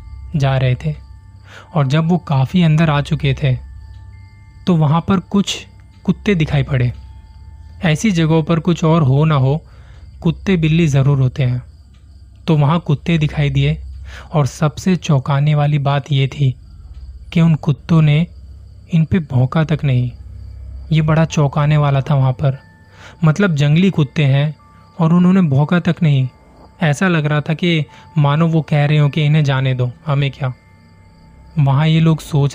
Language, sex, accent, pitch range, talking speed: Hindi, male, native, 125-155 Hz, 160 wpm